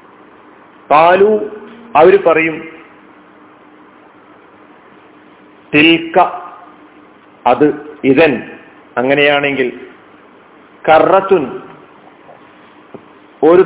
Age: 40-59